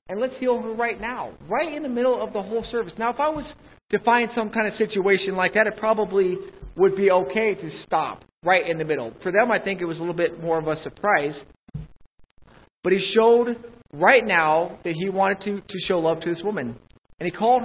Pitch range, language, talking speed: 170-220 Hz, English, 230 wpm